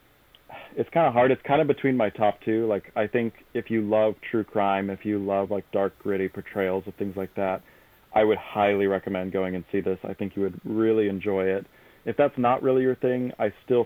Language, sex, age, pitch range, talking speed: English, male, 30-49, 95-110 Hz, 230 wpm